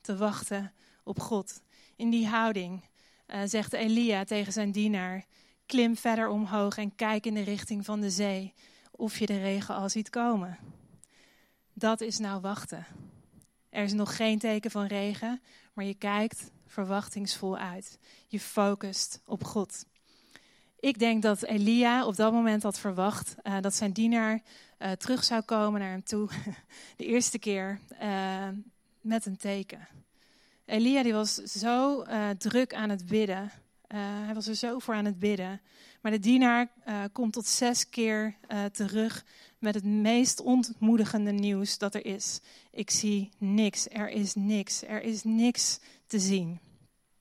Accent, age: Dutch, 20-39